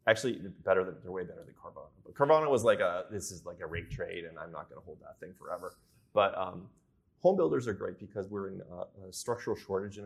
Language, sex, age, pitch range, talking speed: English, male, 30-49, 95-135 Hz, 245 wpm